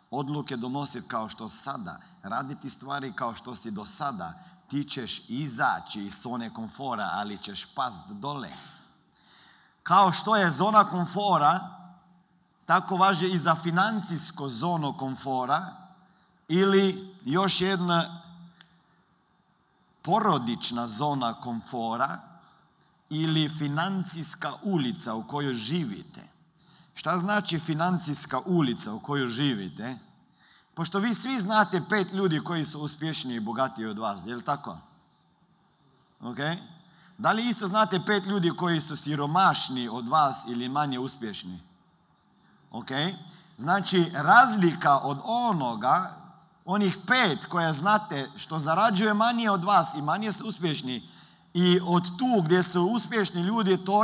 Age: 50-69